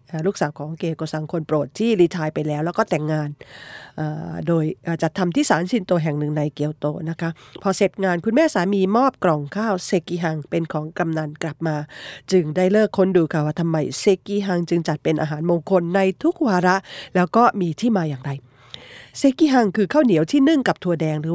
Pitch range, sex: 155-220 Hz, female